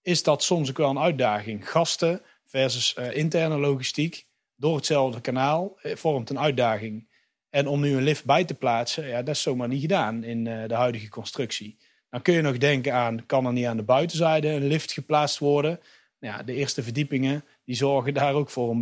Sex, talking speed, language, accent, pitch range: male, 205 wpm, Dutch, Dutch, 125-150 Hz